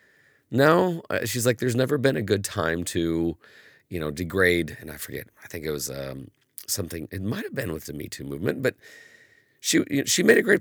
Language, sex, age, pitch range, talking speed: English, male, 30-49, 80-110 Hz, 210 wpm